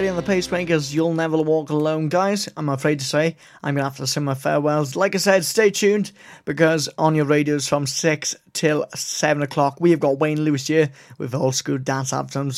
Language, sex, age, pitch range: English, male, 30-49, 140-185 Hz